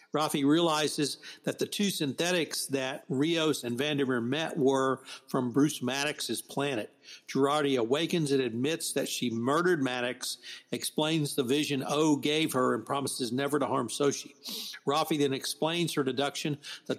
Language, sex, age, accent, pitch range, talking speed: English, male, 60-79, American, 135-155 Hz, 150 wpm